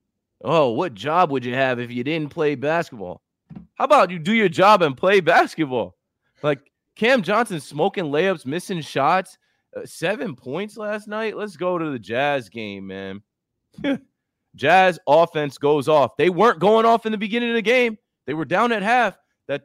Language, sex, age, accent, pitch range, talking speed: English, male, 20-39, American, 125-200 Hz, 180 wpm